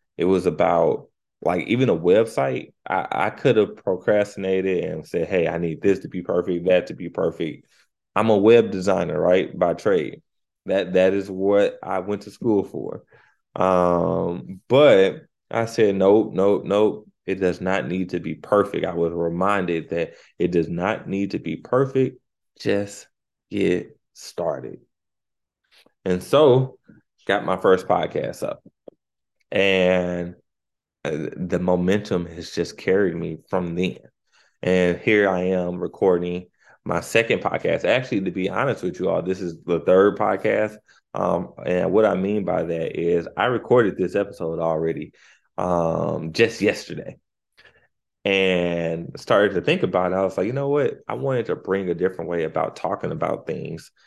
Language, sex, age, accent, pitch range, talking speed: English, male, 20-39, American, 90-105 Hz, 160 wpm